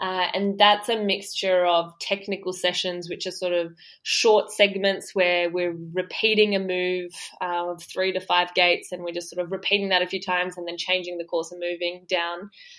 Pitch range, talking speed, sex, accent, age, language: 175-200 Hz, 200 wpm, female, Australian, 20-39, English